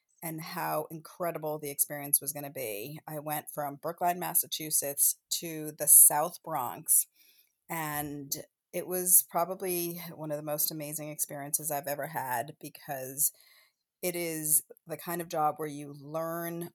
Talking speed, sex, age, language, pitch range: 145 wpm, female, 30-49, English, 145-170 Hz